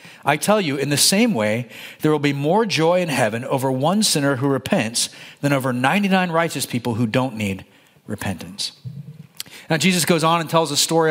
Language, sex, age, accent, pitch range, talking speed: English, male, 40-59, American, 145-200 Hz, 195 wpm